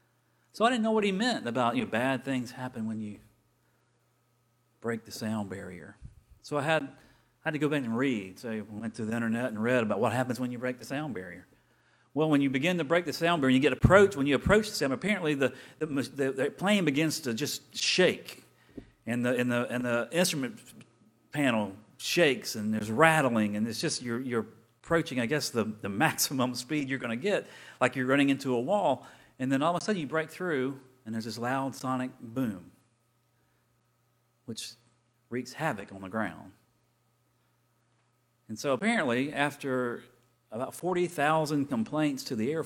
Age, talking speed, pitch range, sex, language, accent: 40-59, 195 wpm, 115-145 Hz, male, English, American